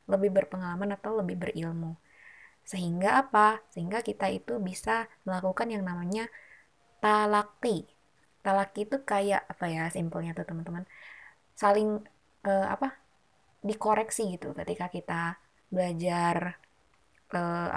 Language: Indonesian